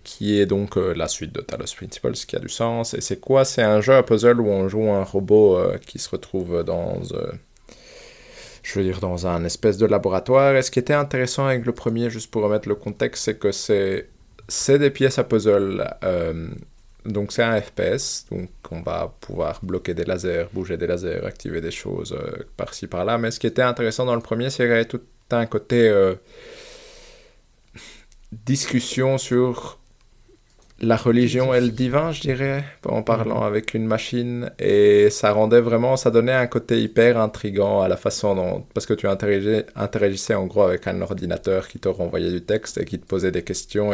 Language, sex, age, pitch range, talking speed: French, male, 20-39, 105-125 Hz, 200 wpm